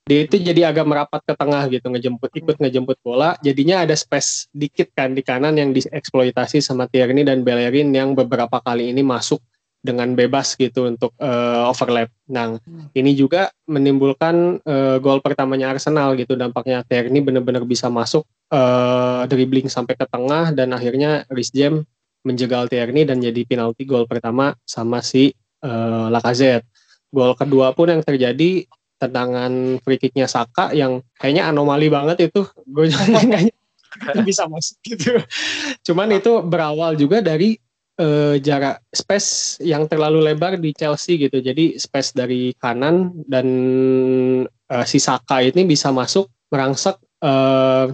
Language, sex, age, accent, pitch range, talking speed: Indonesian, male, 20-39, native, 125-155 Hz, 145 wpm